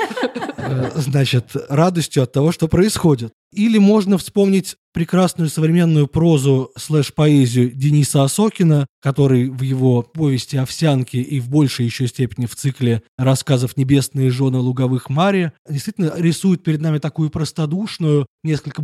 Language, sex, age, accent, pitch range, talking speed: Russian, male, 20-39, native, 130-155 Hz, 120 wpm